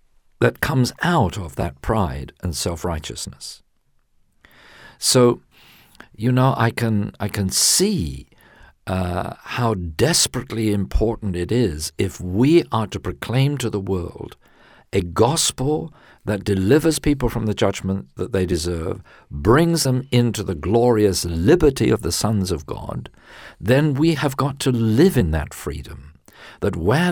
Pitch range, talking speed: 95-130 Hz, 140 wpm